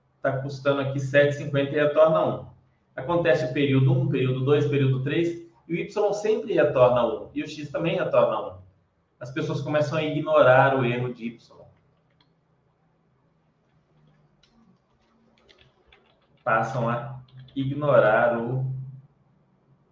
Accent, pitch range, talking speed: Brazilian, 125-150 Hz, 125 wpm